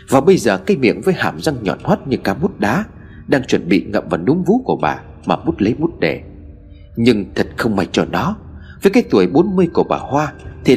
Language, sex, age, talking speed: Vietnamese, male, 30-49, 235 wpm